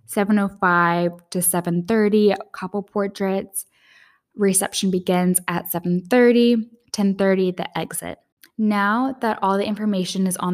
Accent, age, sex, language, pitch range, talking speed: American, 10-29, female, English, 175-215 Hz, 110 wpm